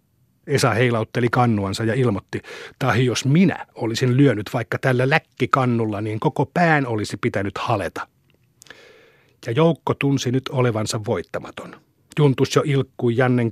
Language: Finnish